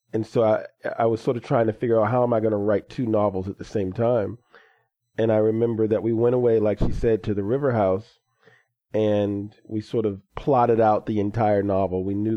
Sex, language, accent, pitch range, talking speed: male, English, American, 105-115 Hz, 235 wpm